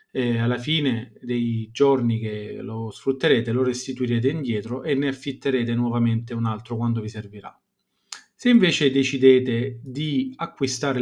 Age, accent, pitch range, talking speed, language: 30-49, native, 120-140 Hz, 135 wpm, Italian